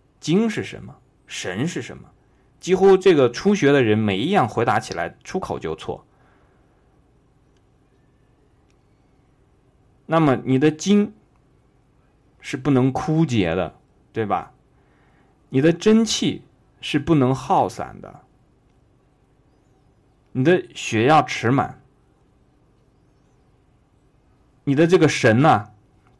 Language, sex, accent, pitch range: Chinese, male, native, 110-145 Hz